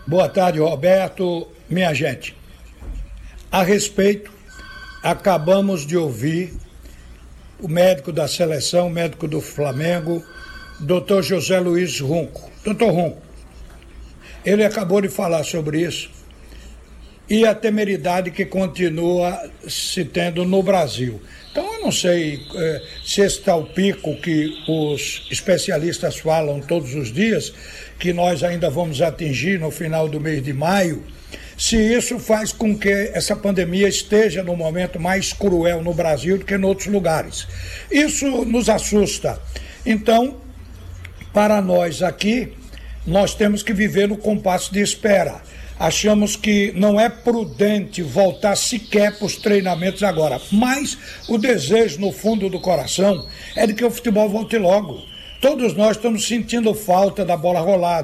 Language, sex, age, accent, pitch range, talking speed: Portuguese, male, 60-79, Brazilian, 155-205 Hz, 135 wpm